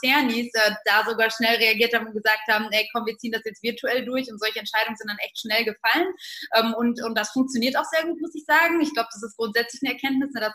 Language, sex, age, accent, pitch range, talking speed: German, female, 20-39, German, 215-245 Hz, 240 wpm